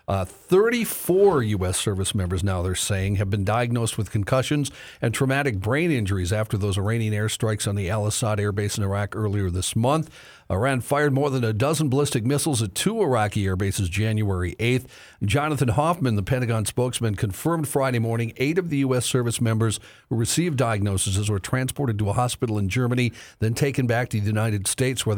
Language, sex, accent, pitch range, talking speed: English, male, American, 105-130 Hz, 185 wpm